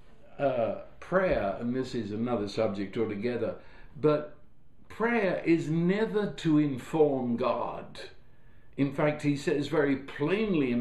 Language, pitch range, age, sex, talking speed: English, 135-180 Hz, 60-79, male, 120 wpm